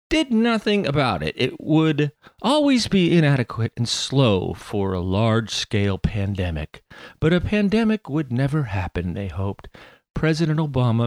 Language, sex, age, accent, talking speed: English, male, 40-59, American, 135 wpm